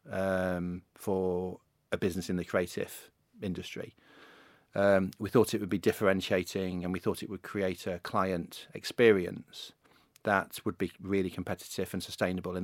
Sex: male